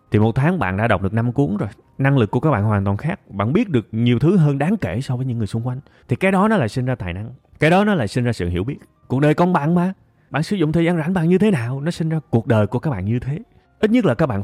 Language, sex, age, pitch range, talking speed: Vietnamese, male, 20-39, 100-150 Hz, 335 wpm